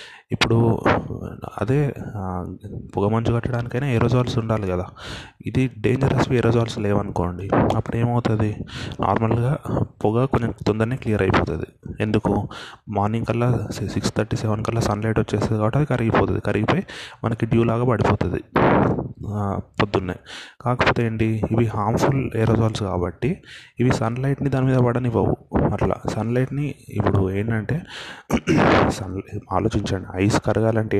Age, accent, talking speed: 30-49, native, 110 wpm